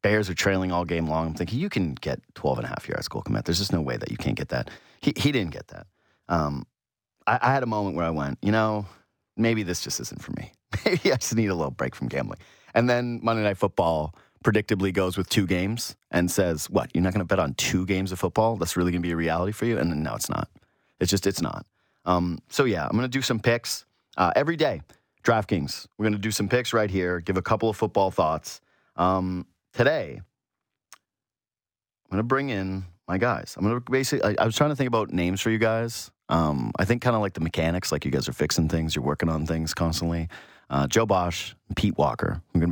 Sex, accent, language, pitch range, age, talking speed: male, American, English, 85-110 Hz, 30-49, 250 wpm